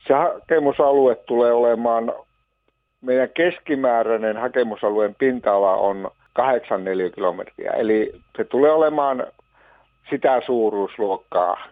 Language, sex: Finnish, male